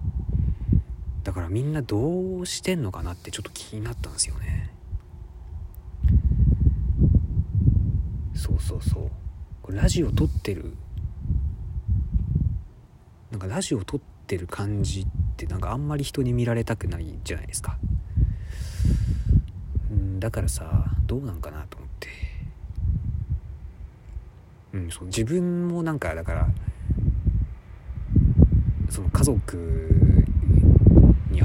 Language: Japanese